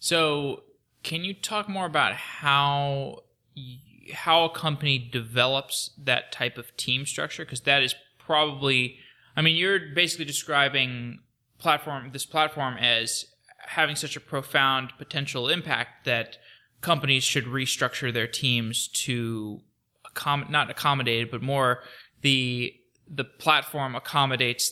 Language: English